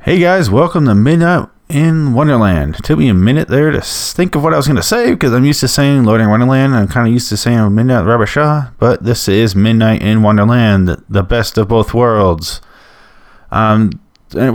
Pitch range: 95-120 Hz